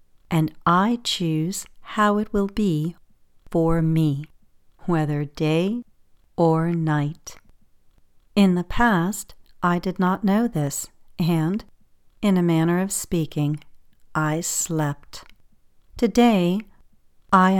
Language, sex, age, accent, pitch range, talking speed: English, female, 50-69, American, 155-195 Hz, 105 wpm